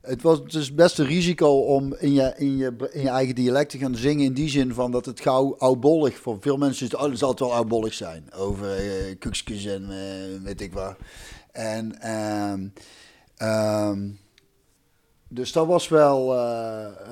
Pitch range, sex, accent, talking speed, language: 115-140 Hz, male, Dutch, 180 wpm, Dutch